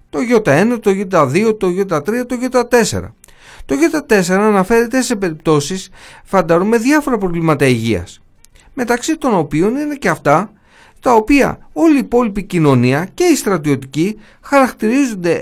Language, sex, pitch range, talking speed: Greek, male, 170-265 Hz, 130 wpm